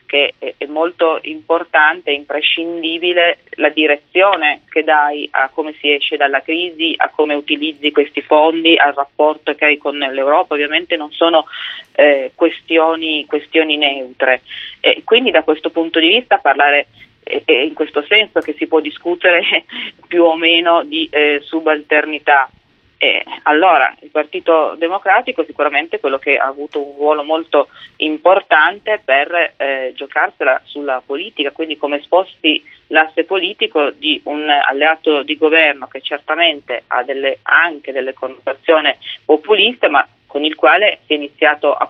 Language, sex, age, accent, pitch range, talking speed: Italian, female, 30-49, native, 145-170 Hz, 145 wpm